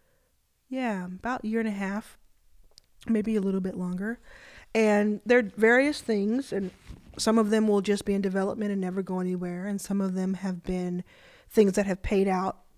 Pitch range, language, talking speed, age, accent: 185-225 Hz, English, 195 wpm, 20-39, American